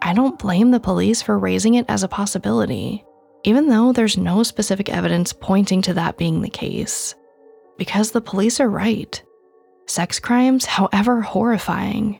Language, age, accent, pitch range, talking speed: English, 20-39, American, 185-235 Hz, 155 wpm